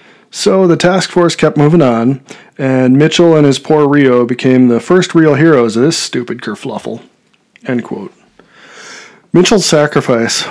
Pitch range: 120-155 Hz